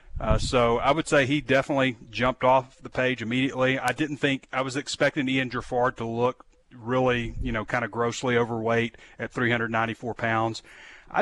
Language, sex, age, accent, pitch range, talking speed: English, male, 30-49, American, 115-145 Hz, 175 wpm